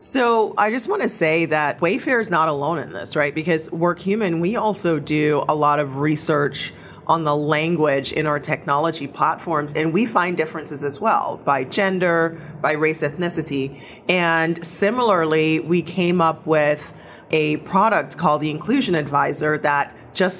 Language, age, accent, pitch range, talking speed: English, 30-49, American, 150-180 Hz, 160 wpm